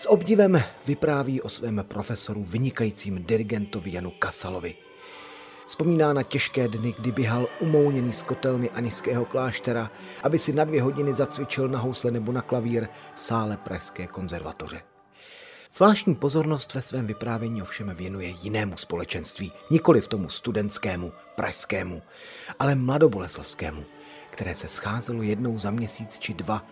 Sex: male